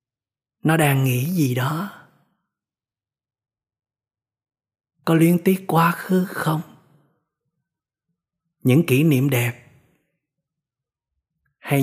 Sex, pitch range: male, 125-160 Hz